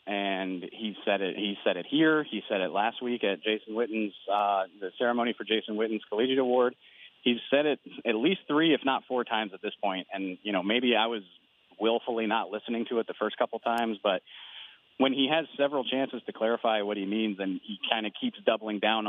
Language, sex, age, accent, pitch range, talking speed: English, male, 30-49, American, 105-120 Hz, 220 wpm